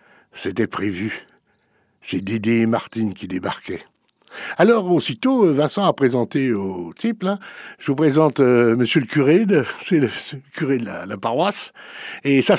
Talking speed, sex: 155 wpm, male